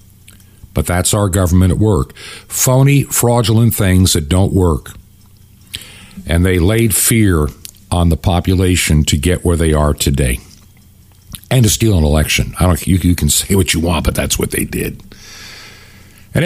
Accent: American